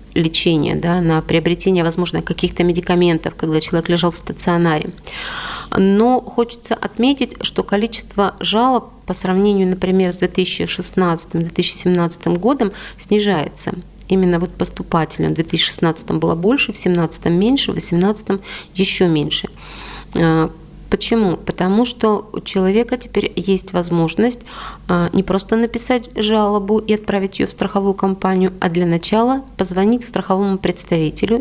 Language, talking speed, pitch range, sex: Russian, 115 wpm, 170-205 Hz, female